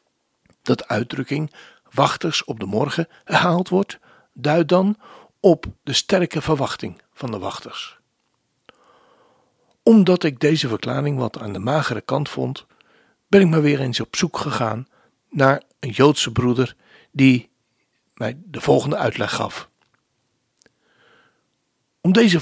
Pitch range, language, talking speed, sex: 115-170 Hz, Dutch, 125 wpm, male